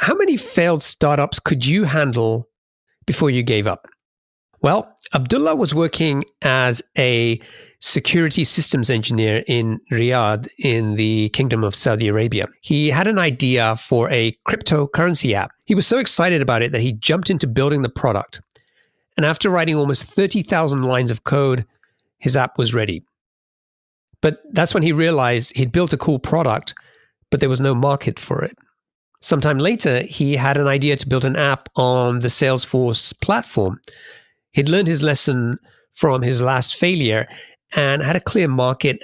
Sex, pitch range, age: male, 120-155 Hz, 40-59